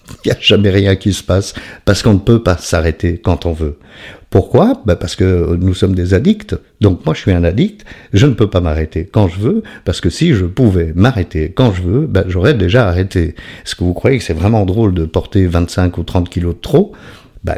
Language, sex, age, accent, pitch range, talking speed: French, male, 50-69, French, 85-105 Hz, 235 wpm